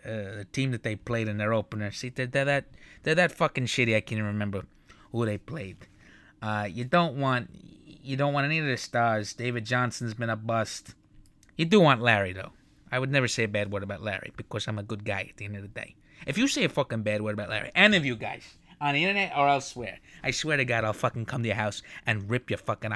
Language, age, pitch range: English, 30-49, 105-130 Hz